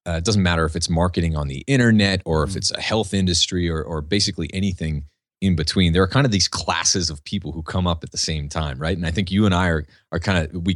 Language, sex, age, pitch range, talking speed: English, male, 30-49, 80-100 Hz, 275 wpm